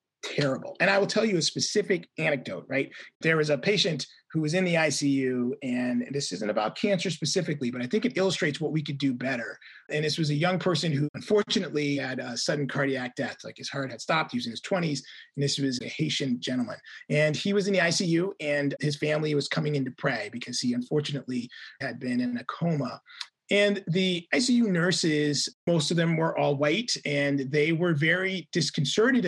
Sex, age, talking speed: male, 30-49, 205 wpm